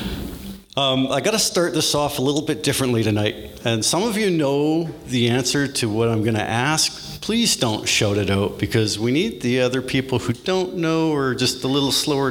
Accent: American